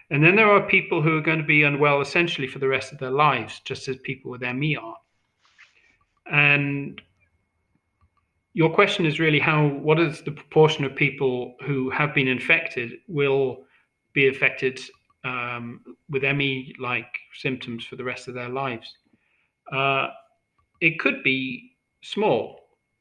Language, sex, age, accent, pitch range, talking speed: English, male, 40-59, British, 125-150 Hz, 150 wpm